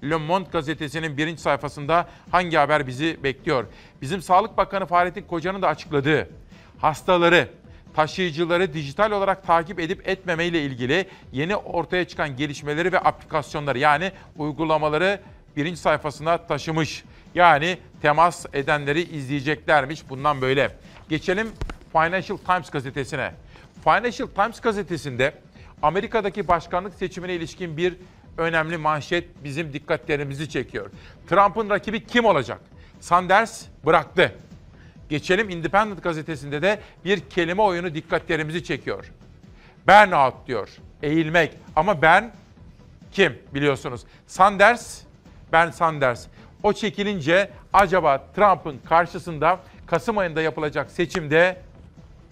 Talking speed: 105 wpm